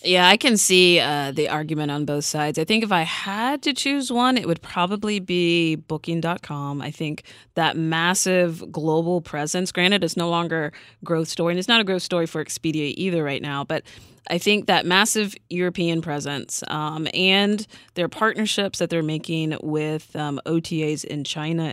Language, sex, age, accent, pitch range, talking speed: English, female, 30-49, American, 150-180 Hz, 180 wpm